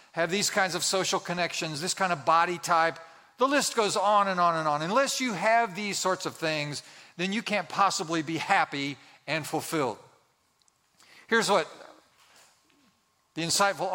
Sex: male